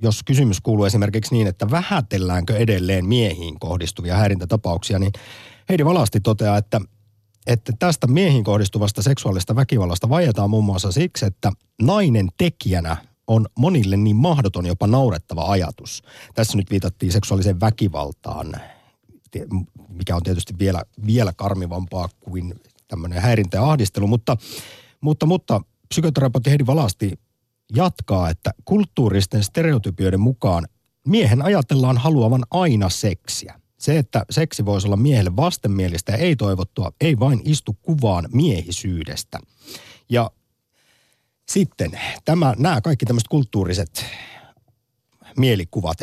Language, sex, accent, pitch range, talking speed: Finnish, male, native, 95-130 Hz, 120 wpm